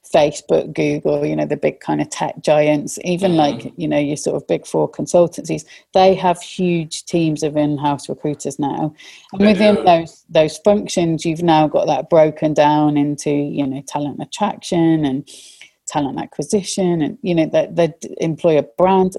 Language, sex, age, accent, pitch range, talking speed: English, female, 30-49, British, 150-190 Hz, 165 wpm